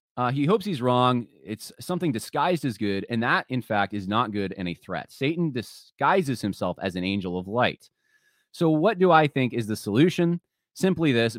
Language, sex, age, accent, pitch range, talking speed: English, male, 30-49, American, 100-155 Hz, 200 wpm